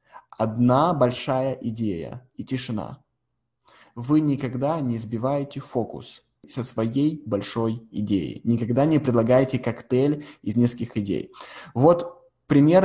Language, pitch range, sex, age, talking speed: Russian, 115-140 Hz, male, 20-39, 105 wpm